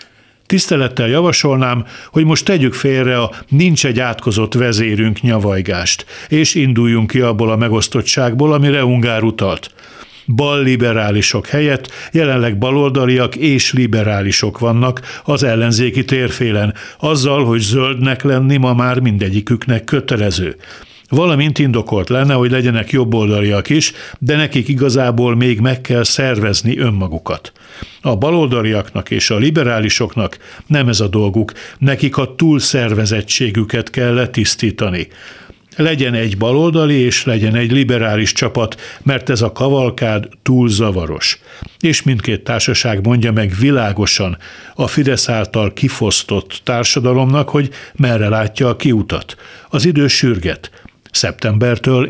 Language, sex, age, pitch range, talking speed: Hungarian, male, 60-79, 110-135 Hz, 115 wpm